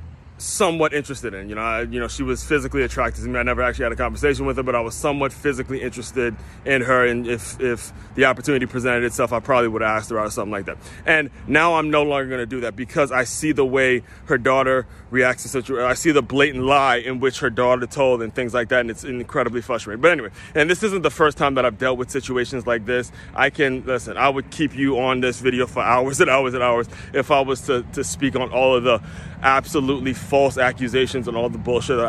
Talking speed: 250 wpm